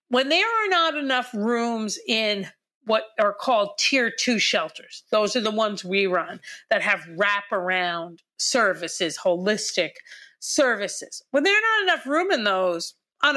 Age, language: 50-69, English